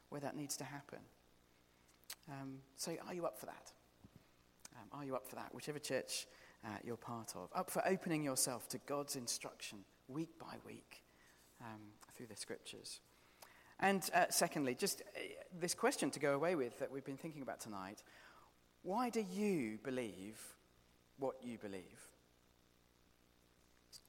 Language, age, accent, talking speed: English, 40-59, British, 155 wpm